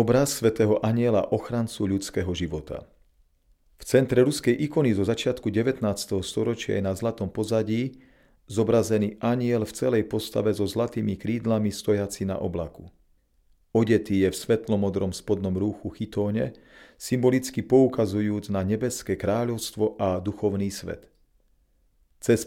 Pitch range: 100-120 Hz